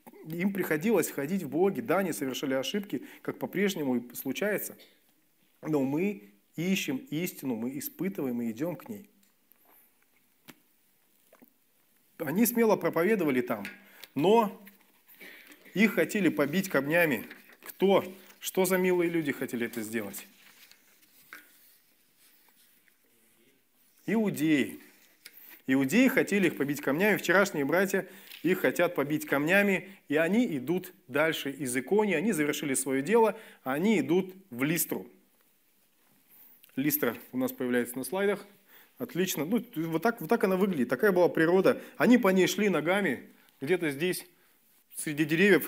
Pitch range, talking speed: 150-210 Hz, 120 wpm